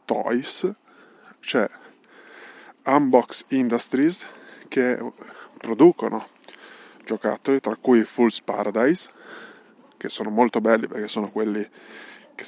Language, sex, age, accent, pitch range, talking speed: Italian, male, 20-39, native, 110-130 Hz, 90 wpm